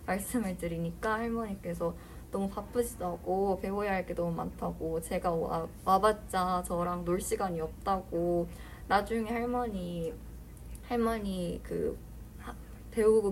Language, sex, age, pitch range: Korean, female, 20-39, 165-215 Hz